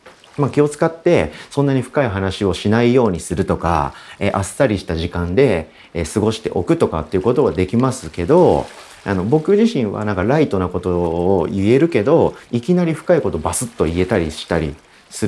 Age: 40-59